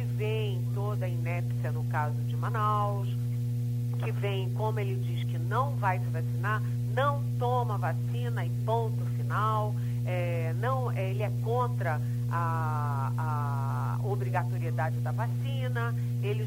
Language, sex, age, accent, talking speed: Portuguese, female, 40-59, Brazilian, 130 wpm